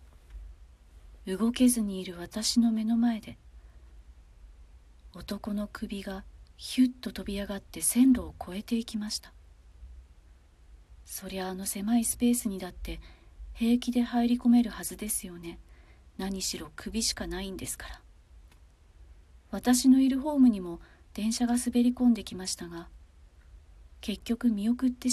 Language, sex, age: Japanese, female, 40-59